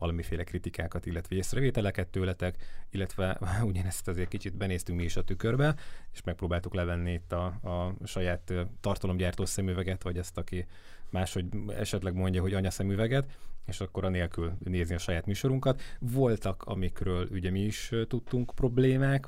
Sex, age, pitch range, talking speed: male, 30-49, 90-100 Hz, 145 wpm